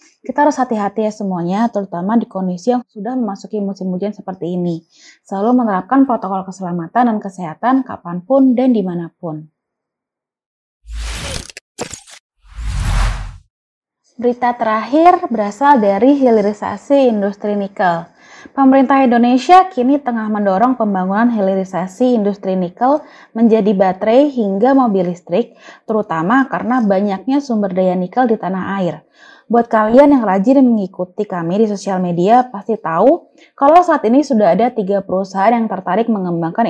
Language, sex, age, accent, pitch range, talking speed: Indonesian, female, 20-39, native, 185-245 Hz, 125 wpm